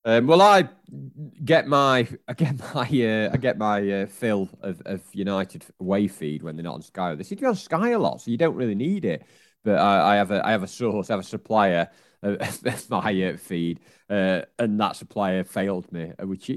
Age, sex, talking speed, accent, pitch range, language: 30-49, male, 215 wpm, British, 90-130 Hz, English